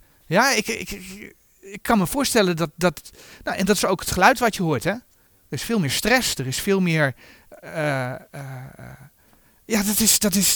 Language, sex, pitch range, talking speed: Dutch, male, 150-215 Hz, 210 wpm